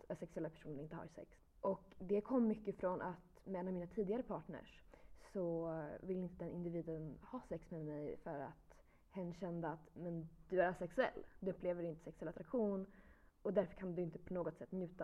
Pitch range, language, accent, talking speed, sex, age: 170-210 Hz, Swedish, native, 200 wpm, female, 20-39